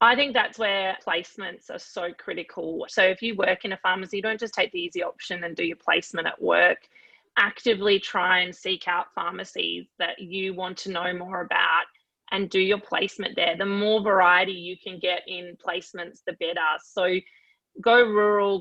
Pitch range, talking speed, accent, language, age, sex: 180-215 Hz, 185 wpm, Australian, English, 20-39, female